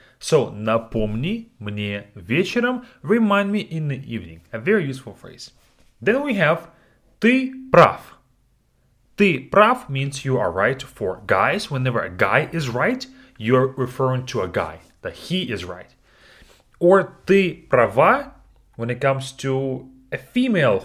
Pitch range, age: 115-195 Hz, 30-49